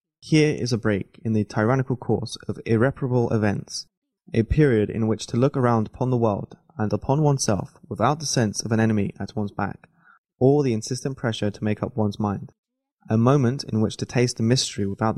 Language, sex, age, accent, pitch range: Chinese, male, 20-39, British, 105-135 Hz